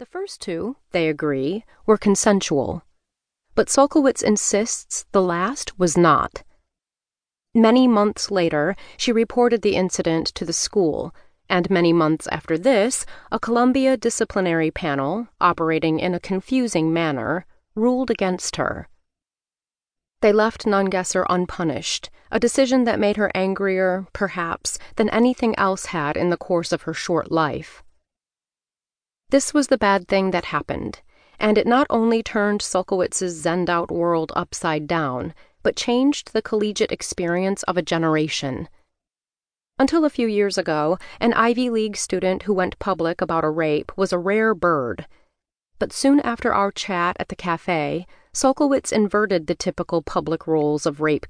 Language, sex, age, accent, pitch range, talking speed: English, female, 30-49, American, 165-220 Hz, 145 wpm